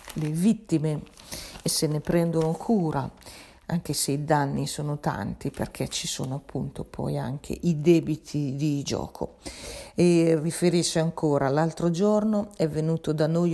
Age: 40-59